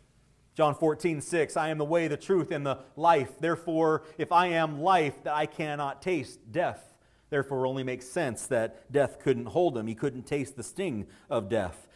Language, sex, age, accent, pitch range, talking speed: English, male, 40-59, American, 145-200 Hz, 195 wpm